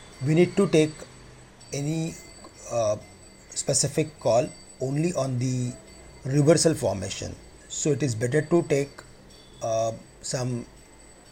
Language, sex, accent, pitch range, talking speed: English, male, Indian, 125-150 Hz, 110 wpm